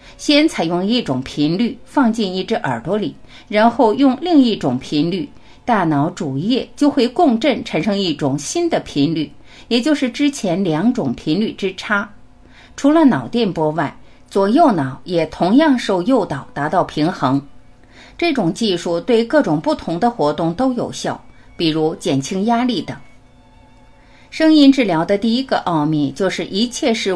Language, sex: Chinese, female